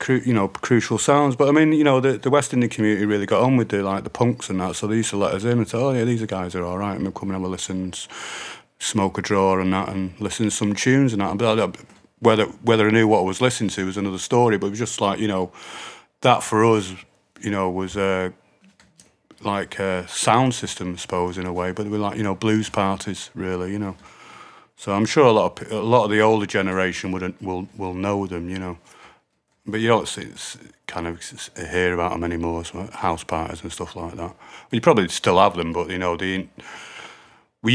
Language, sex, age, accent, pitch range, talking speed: English, male, 30-49, British, 90-110 Hz, 250 wpm